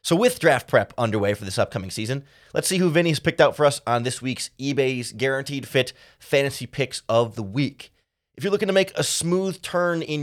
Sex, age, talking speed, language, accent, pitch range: male, 30-49, 225 wpm, English, American, 120-155 Hz